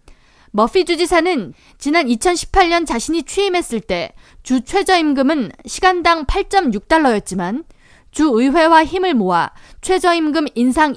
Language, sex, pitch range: Korean, female, 245-345 Hz